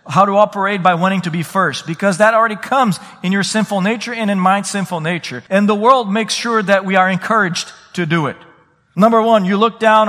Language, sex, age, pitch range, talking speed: English, male, 40-59, 165-210 Hz, 225 wpm